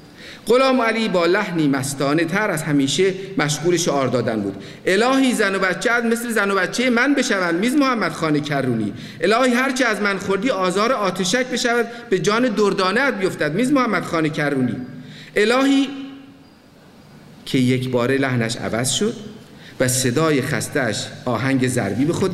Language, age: Persian, 50-69